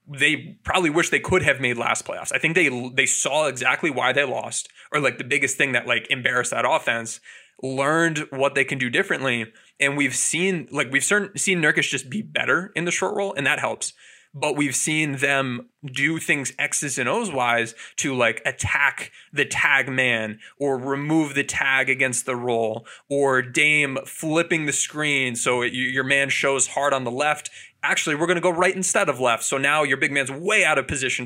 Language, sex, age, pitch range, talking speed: English, male, 20-39, 125-150 Hz, 205 wpm